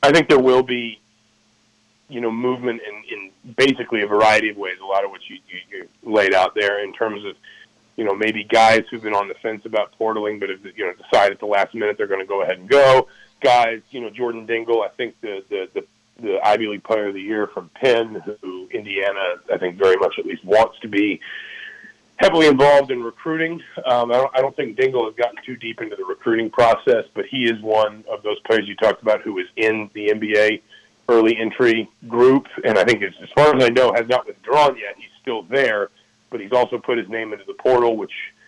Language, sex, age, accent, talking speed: English, male, 40-59, American, 230 wpm